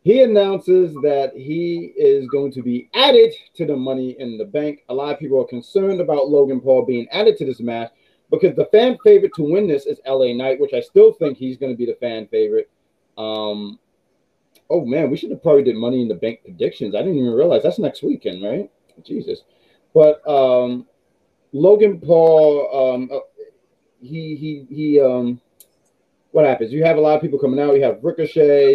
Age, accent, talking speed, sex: 30-49, American, 200 wpm, male